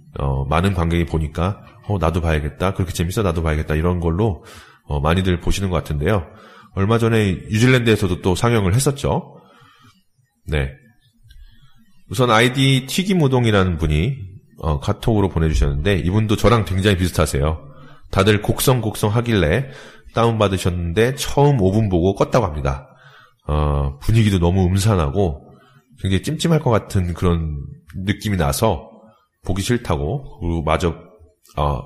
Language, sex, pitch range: Korean, male, 80-115 Hz